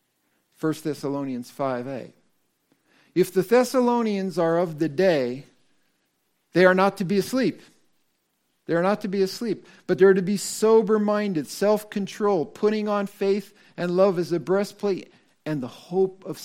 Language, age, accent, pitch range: English, 50-69, American, 135-195 Hz